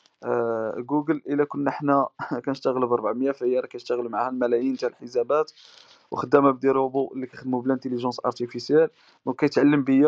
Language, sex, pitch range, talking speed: Arabic, male, 125-145 Hz, 160 wpm